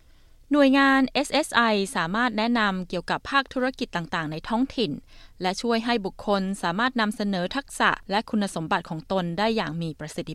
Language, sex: Thai, female